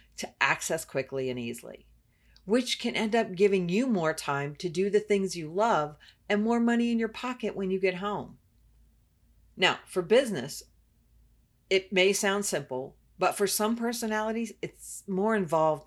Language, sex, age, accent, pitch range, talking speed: English, female, 50-69, American, 165-215 Hz, 165 wpm